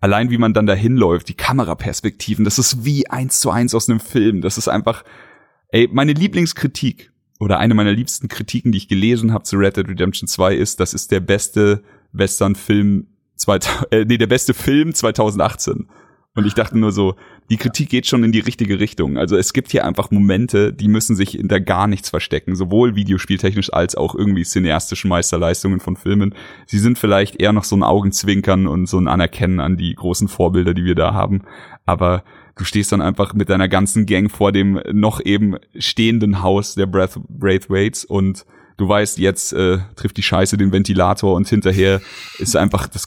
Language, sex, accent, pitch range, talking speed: German, male, German, 95-120 Hz, 190 wpm